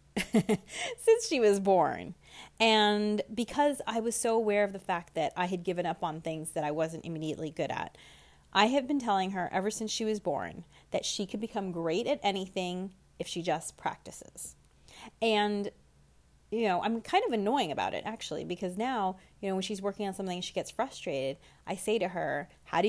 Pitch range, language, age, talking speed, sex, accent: 175-225 Hz, English, 30-49, 200 wpm, female, American